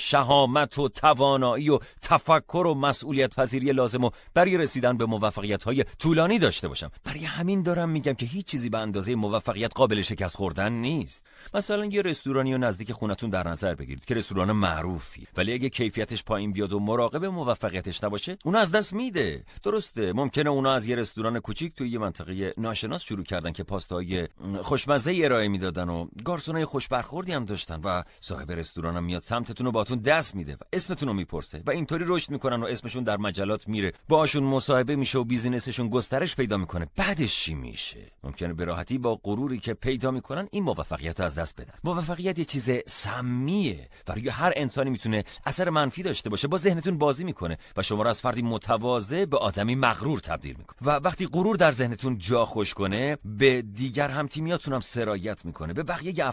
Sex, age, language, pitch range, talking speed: male, 40-59, Persian, 105-145 Hz, 175 wpm